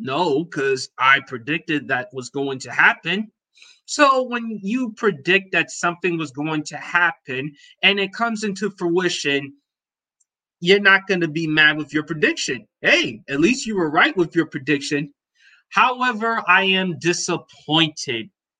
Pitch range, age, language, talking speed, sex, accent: 150-200 Hz, 30-49, English, 150 wpm, male, American